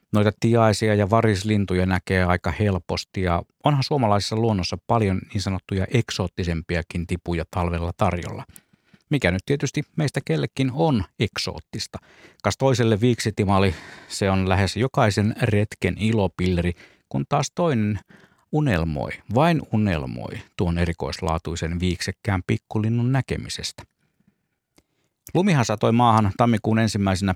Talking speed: 110 wpm